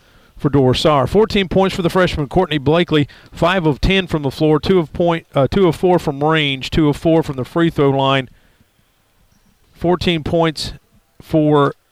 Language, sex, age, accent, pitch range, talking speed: English, male, 50-69, American, 135-160 Hz, 175 wpm